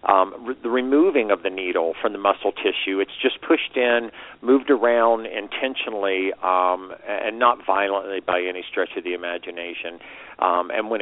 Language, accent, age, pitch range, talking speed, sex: English, American, 50-69, 90-115 Hz, 165 wpm, male